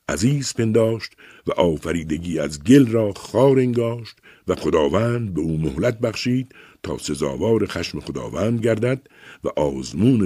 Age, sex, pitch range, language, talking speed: 60-79, male, 85-125 Hz, Persian, 125 wpm